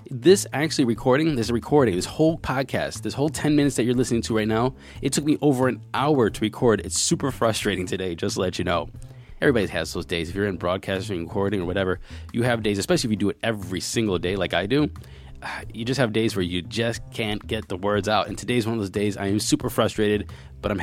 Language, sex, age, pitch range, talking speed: English, male, 20-39, 100-130 Hz, 240 wpm